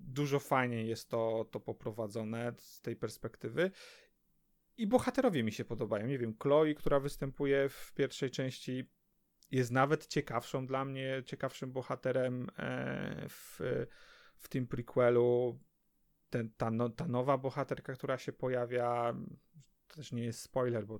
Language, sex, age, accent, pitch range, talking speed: Polish, male, 30-49, native, 115-145 Hz, 130 wpm